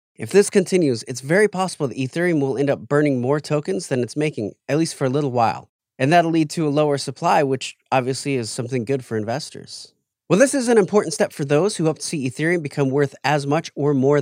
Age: 30-49